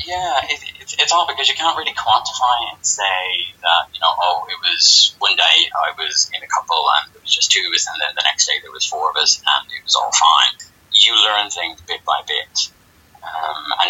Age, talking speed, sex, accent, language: 30-49, 240 wpm, male, British, English